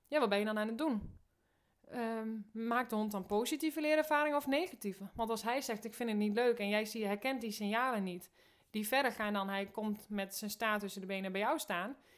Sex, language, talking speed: female, Dutch, 230 wpm